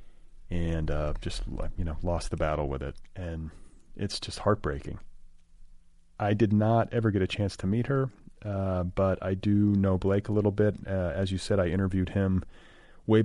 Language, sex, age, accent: English, male, 40-59, American